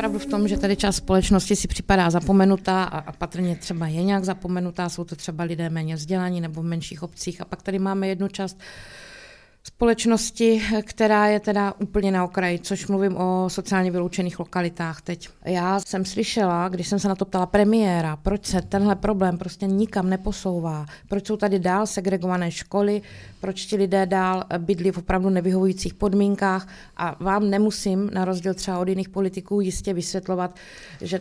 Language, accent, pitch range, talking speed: Czech, native, 180-195 Hz, 170 wpm